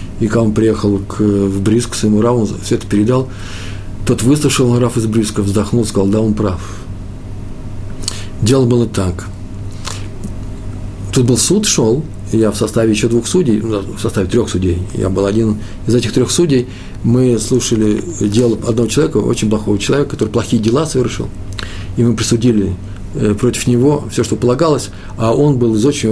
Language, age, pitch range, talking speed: Russian, 40-59, 100-125 Hz, 165 wpm